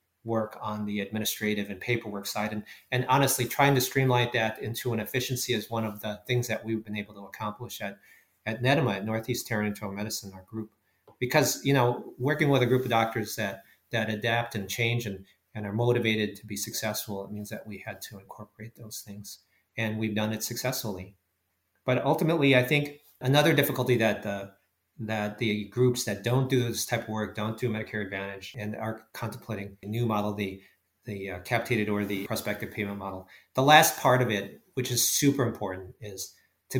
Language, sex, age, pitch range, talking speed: English, male, 40-59, 105-125 Hz, 195 wpm